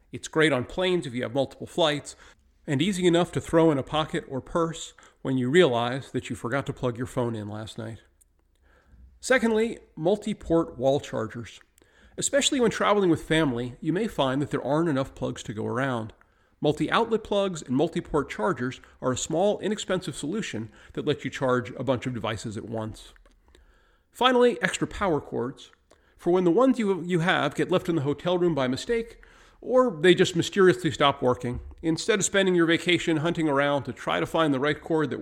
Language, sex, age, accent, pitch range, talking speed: English, male, 40-59, American, 120-180 Hz, 190 wpm